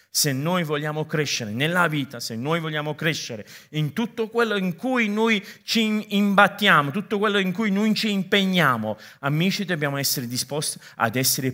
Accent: native